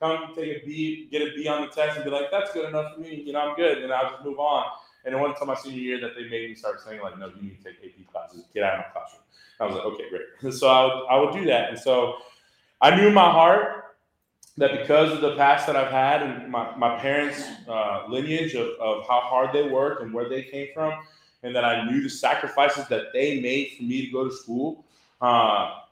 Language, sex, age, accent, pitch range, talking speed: English, male, 20-39, American, 120-145 Hz, 260 wpm